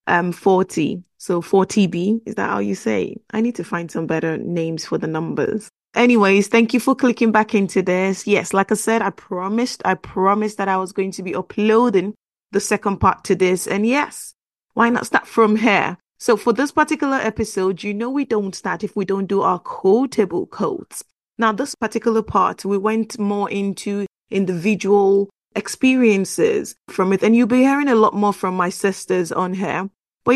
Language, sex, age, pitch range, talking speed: English, female, 20-39, 190-230 Hz, 190 wpm